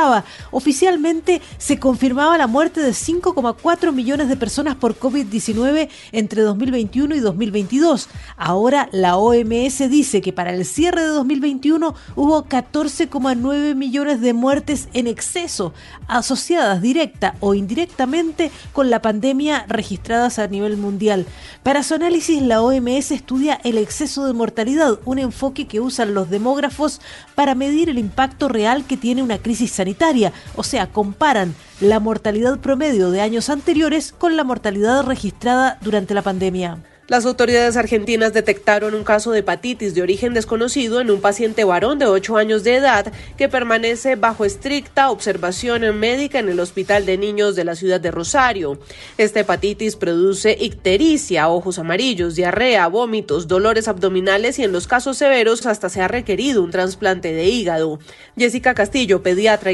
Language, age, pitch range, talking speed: Spanish, 40-59, 200-275 Hz, 150 wpm